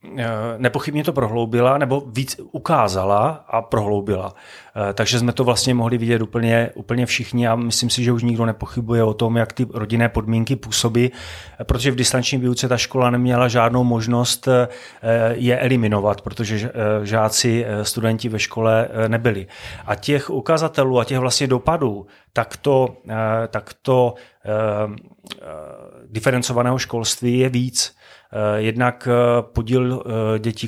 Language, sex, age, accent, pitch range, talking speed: Czech, male, 30-49, native, 110-125 Hz, 125 wpm